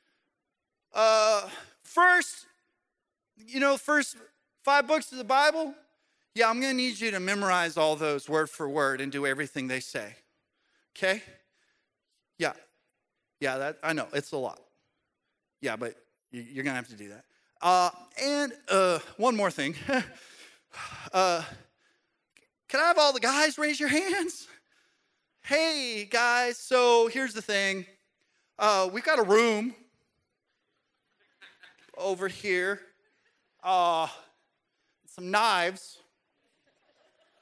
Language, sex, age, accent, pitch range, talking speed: English, male, 30-49, American, 165-275 Hz, 125 wpm